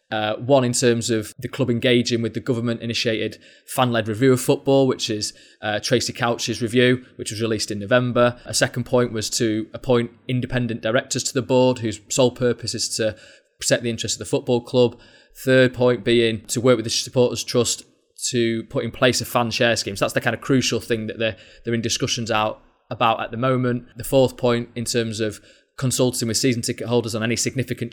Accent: British